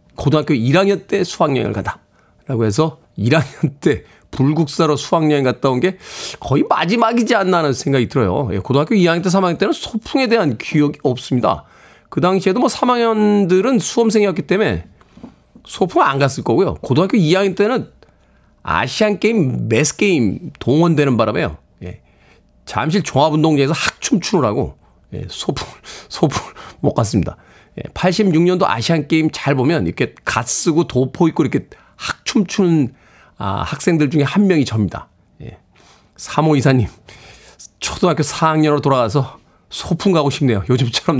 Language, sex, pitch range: Korean, male, 130-185 Hz